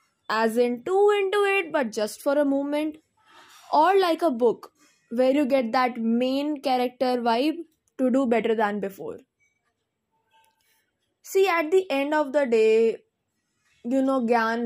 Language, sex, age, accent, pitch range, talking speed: English, female, 20-39, Indian, 235-315 Hz, 145 wpm